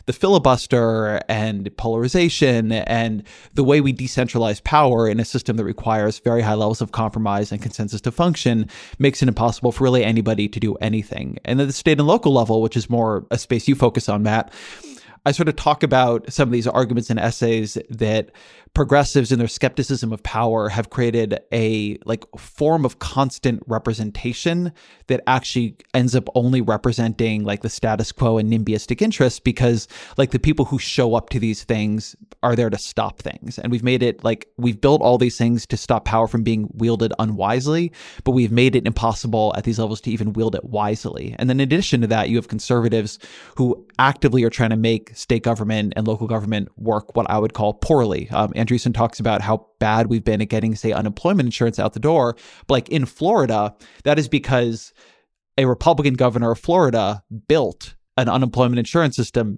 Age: 20-39